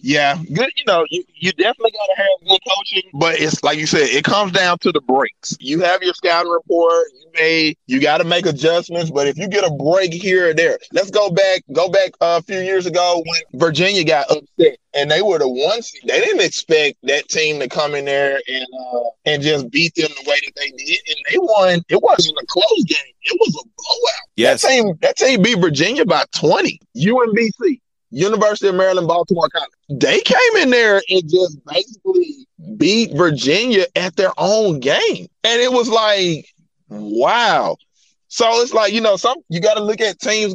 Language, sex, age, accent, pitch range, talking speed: English, male, 20-39, American, 165-235 Hz, 205 wpm